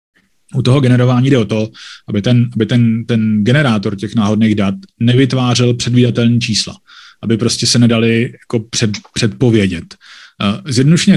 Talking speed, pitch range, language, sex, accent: 140 wpm, 110-125 Hz, Czech, male, native